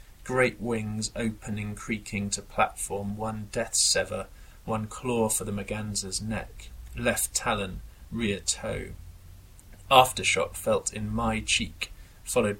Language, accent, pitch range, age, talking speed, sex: English, British, 95-110 Hz, 30-49, 120 wpm, male